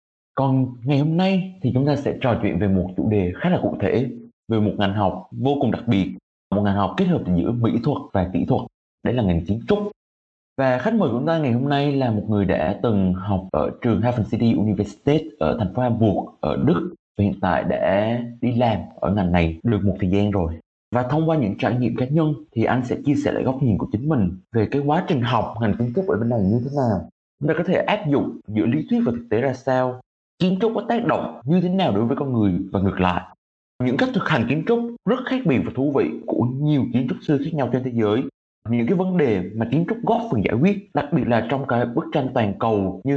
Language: Vietnamese